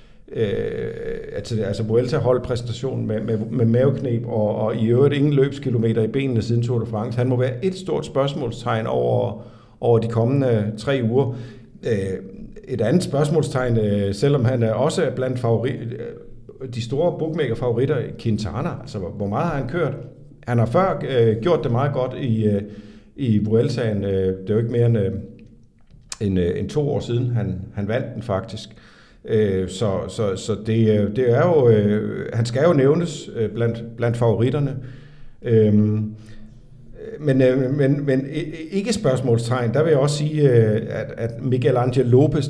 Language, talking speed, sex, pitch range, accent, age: Danish, 160 wpm, male, 110-135 Hz, native, 50-69